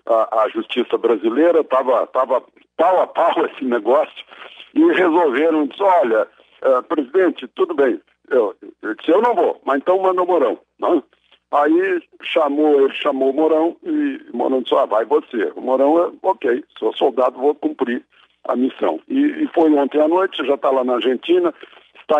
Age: 60-79